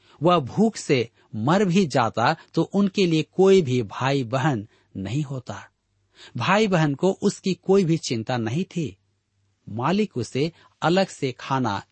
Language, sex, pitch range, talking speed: Hindi, male, 105-155 Hz, 145 wpm